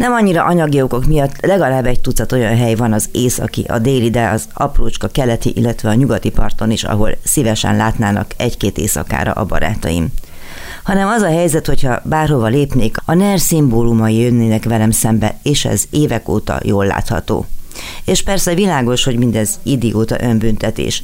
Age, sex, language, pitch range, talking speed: 30-49, female, Hungarian, 105-135 Hz, 165 wpm